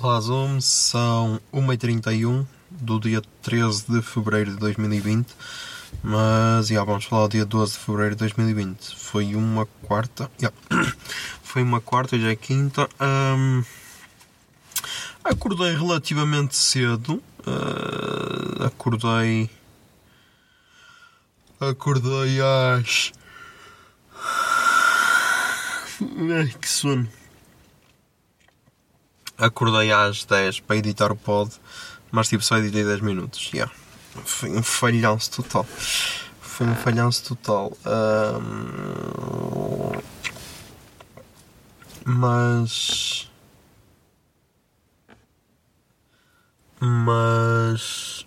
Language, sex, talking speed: Portuguese, male, 80 wpm